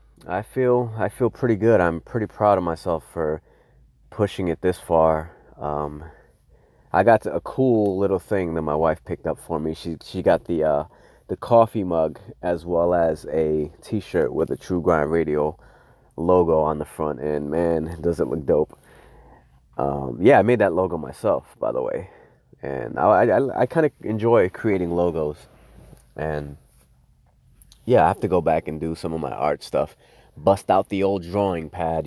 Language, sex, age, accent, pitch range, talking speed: English, male, 30-49, American, 80-100 Hz, 180 wpm